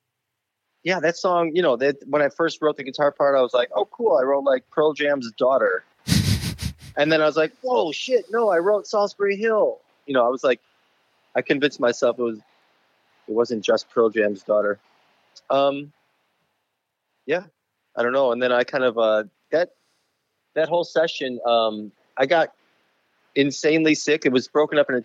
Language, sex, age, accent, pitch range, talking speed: English, male, 30-49, American, 110-150 Hz, 185 wpm